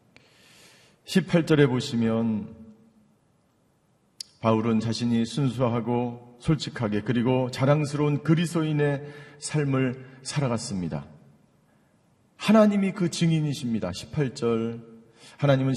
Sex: male